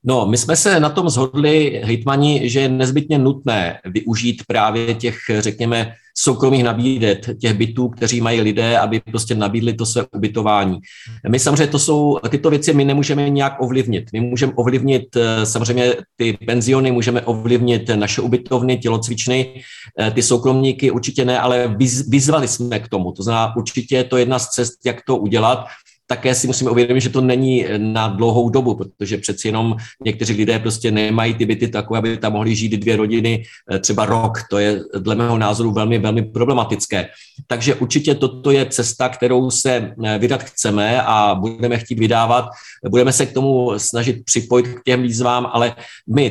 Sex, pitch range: male, 110-130 Hz